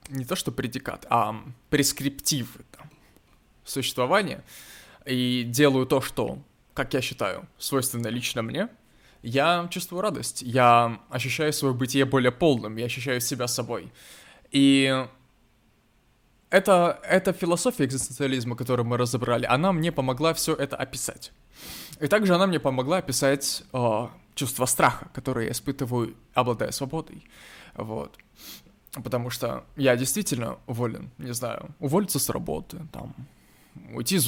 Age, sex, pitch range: 20-39, male, 120-145 Hz